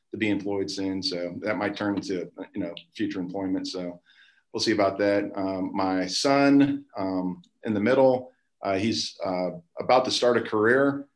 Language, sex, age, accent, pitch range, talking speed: English, male, 40-59, American, 95-115 Hz, 175 wpm